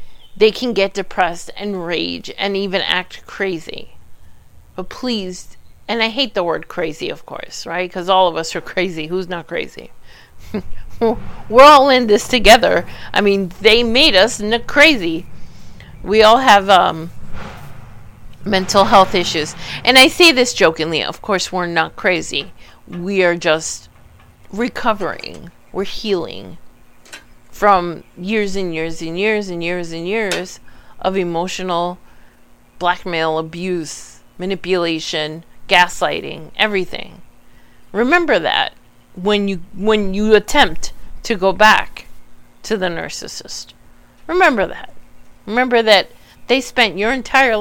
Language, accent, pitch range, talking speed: English, American, 165-215 Hz, 130 wpm